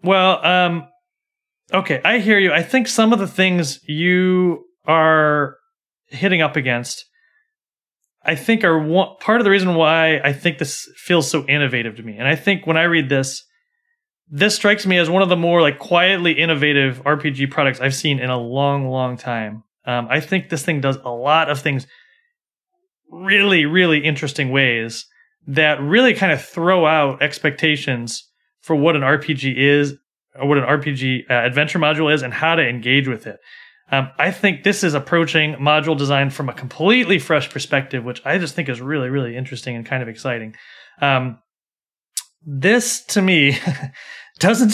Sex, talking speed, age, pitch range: male, 175 wpm, 30-49, 135-185 Hz